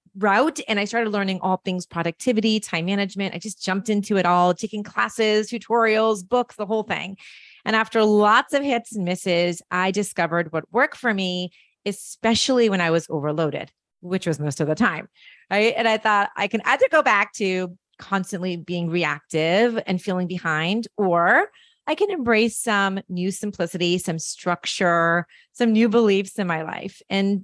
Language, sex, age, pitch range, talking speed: English, female, 30-49, 175-220 Hz, 170 wpm